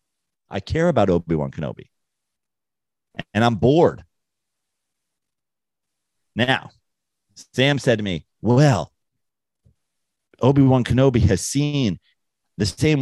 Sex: male